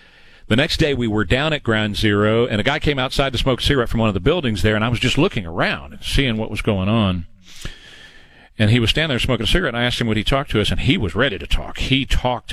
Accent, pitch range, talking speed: American, 95-120 Hz, 290 wpm